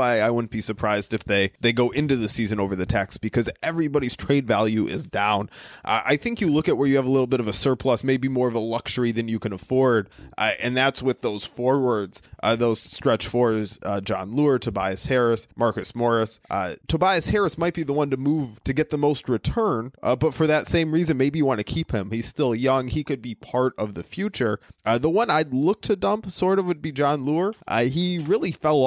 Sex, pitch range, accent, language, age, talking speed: male, 115-145 Hz, American, English, 20-39, 235 wpm